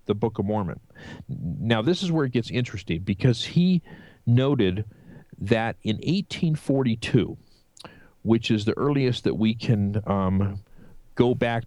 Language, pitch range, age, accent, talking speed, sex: English, 95-125 Hz, 40-59, American, 140 wpm, male